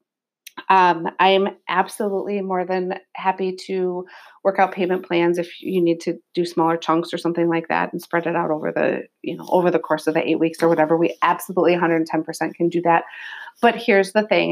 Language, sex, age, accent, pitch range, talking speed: English, female, 30-49, American, 170-205 Hz, 205 wpm